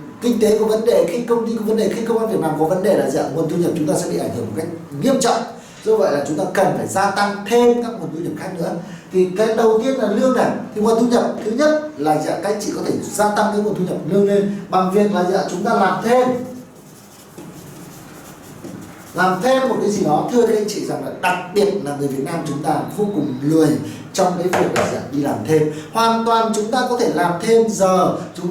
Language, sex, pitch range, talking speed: Vietnamese, male, 165-225 Hz, 265 wpm